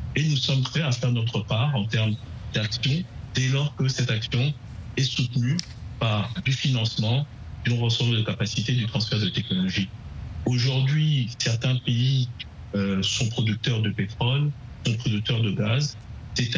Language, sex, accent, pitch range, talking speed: French, male, French, 110-125 Hz, 150 wpm